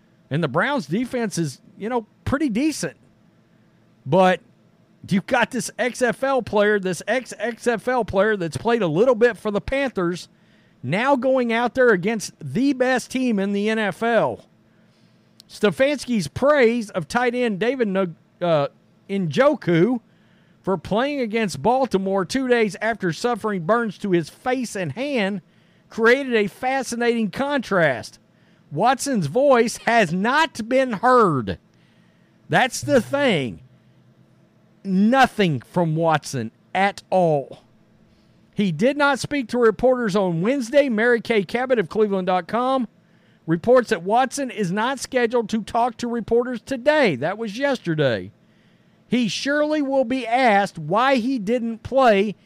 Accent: American